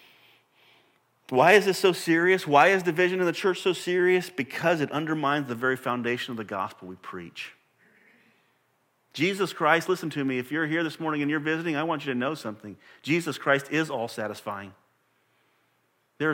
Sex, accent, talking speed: male, American, 180 wpm